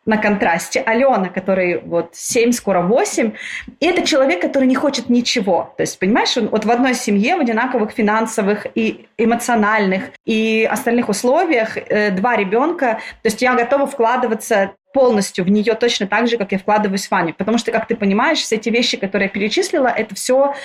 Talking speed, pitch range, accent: 175 wpm, 205-260 Hz, native